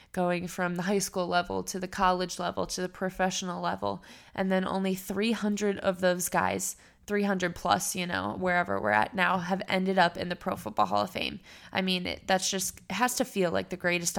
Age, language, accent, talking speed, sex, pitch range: 20-39, English, American, 215 wpm, female, 175-195 Hz